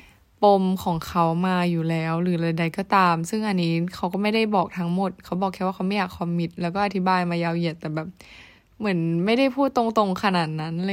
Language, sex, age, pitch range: Thai, female, 10-29, 170-220 Hz